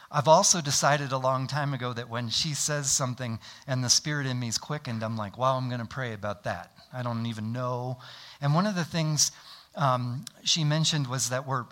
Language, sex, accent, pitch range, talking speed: English, male, American, 115-150 Hz, 220 wpm